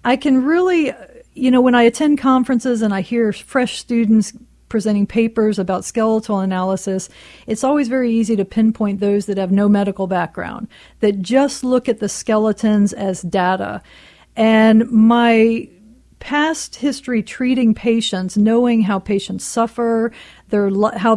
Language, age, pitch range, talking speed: English, 40-59, 200-230 Hz, 145 wpm